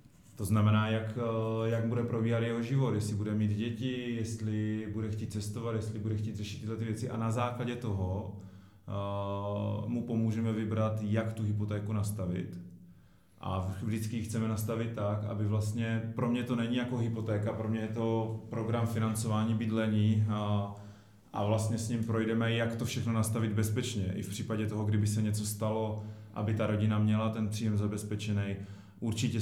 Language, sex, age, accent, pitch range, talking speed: Czech, male, 30-49, native, 105-110 Hz, 165 wpm